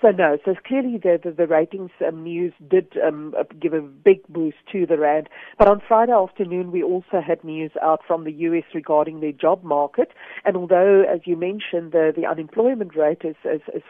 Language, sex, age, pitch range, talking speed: English, female, 50-69, 155-185 Hz, 200 wpm